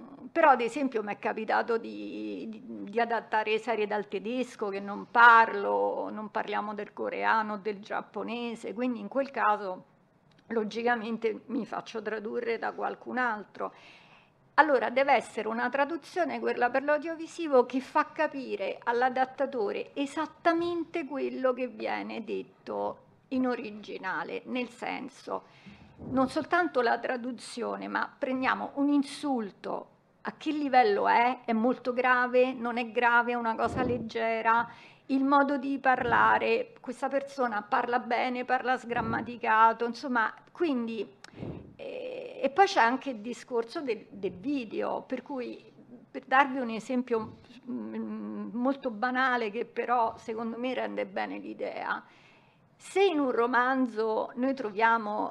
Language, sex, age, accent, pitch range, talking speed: Italian, female, 50-69, native, 225-270 Hz, 125 wpm